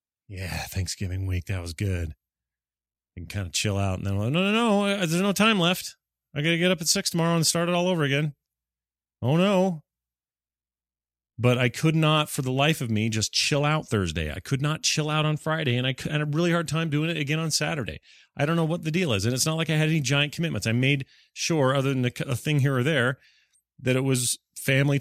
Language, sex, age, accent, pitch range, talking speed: English, male, 30-49, American, 95-150 Hz, 240 wpm